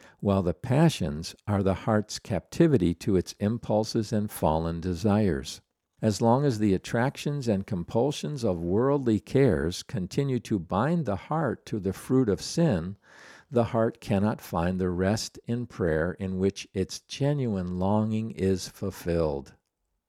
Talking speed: 145 wpm